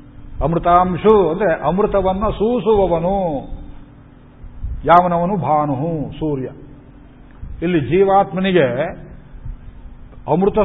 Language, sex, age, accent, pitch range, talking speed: Kannada, male, 50-69, native, 150-175 Hz, 55 wpm